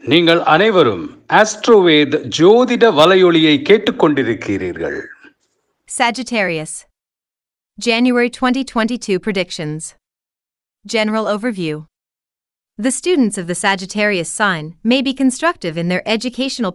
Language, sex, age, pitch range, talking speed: English, female, 30-49, 175-240 Hz, 75 wpm